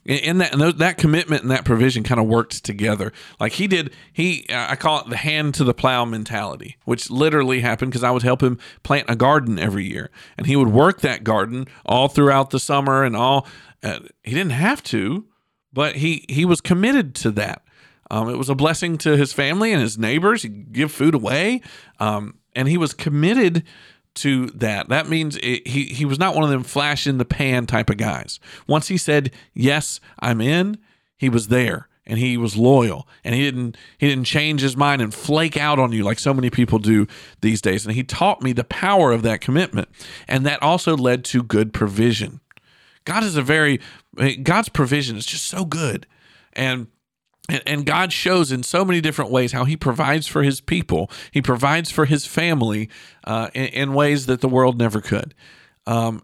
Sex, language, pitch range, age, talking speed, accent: male, English, 120-155 Hz, 50-69, 205 wpm, American